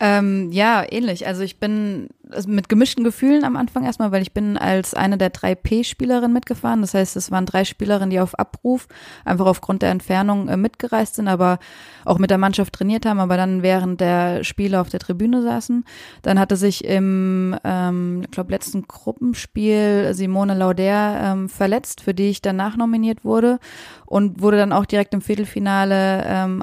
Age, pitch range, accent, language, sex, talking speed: 20-39, 190-210 Hz, German, German, female, 175 wpm